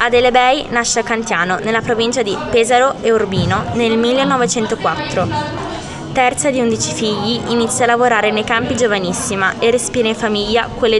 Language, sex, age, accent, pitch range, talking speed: Italian, female, 20-39, native, 205-245 Hz, 155 wpm